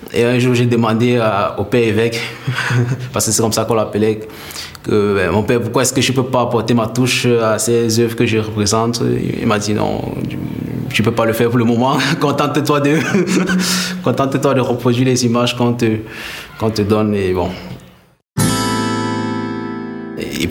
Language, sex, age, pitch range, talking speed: French, male, 20-39, 105-120 Hz, 195 wpm